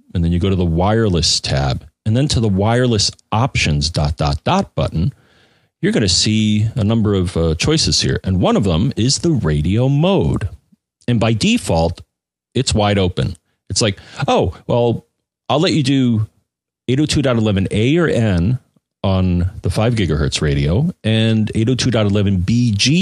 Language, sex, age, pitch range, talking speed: English, male, 40-59, 90-120 Hz, 155 wpm